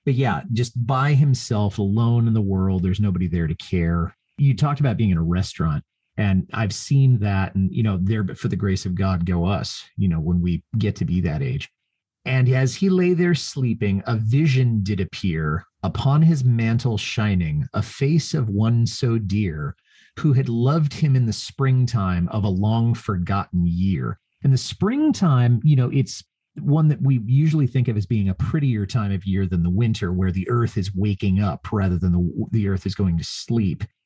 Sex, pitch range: male, 95-130 Hz